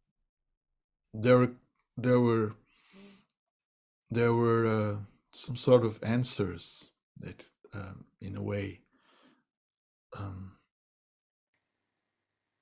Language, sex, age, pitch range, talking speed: French, male, 50-69, 100-125 Hz, 75 wpm